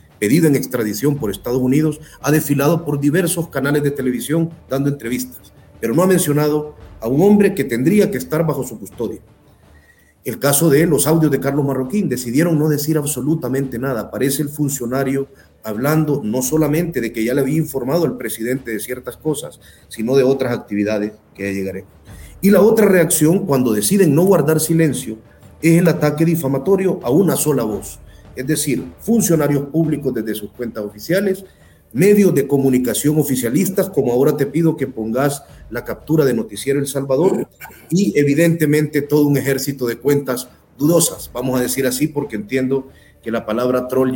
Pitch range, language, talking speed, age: 115-155 Hz, Spanish, 170 wpm, 40-59